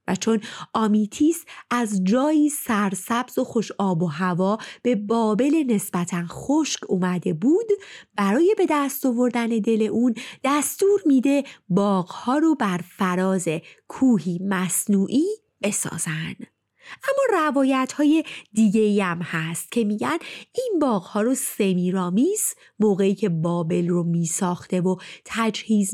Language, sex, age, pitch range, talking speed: Persian, female, 30-49, 190-295 Hz, 120 wpm